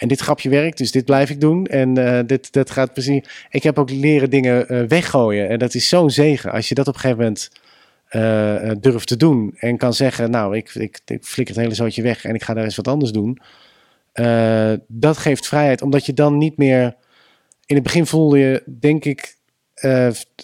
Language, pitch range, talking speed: Dutch, 115-135 Hz, 220 wpm